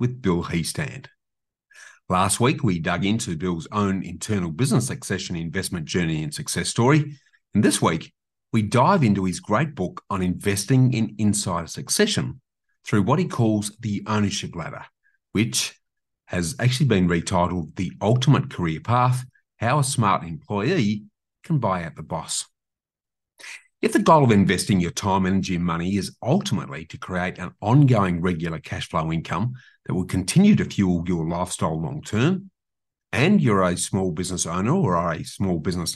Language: English